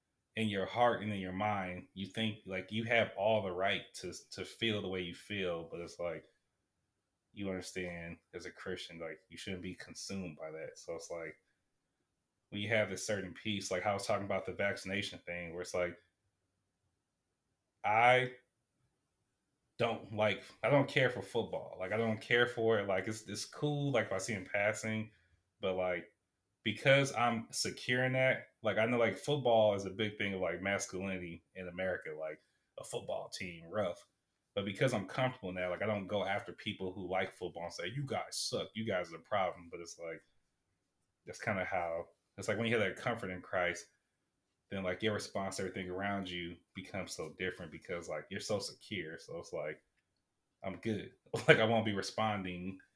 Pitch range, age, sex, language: 90-110 Hz, 20-39, male, English